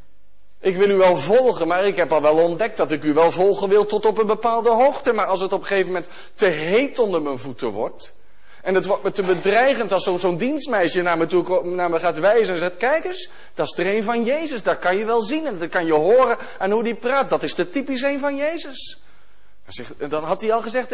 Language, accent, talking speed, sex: Dutch, Dutch, 255 wpm, male